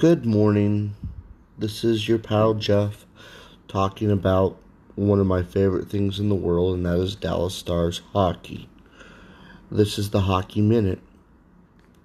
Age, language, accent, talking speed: 30-49, English, American, 140 wpm